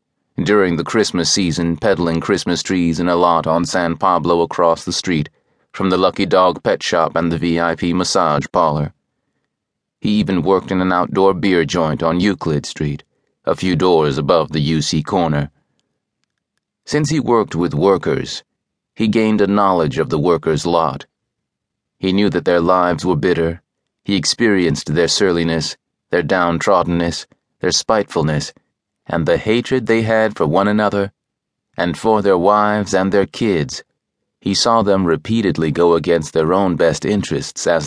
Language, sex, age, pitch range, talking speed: English, male, 30-49, 80-100 Hz, 155 wpm